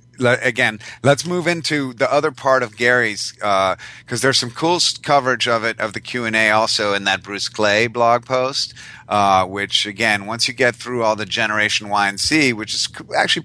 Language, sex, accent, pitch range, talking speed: English, male, American, 105-125 Hz, 190 wpm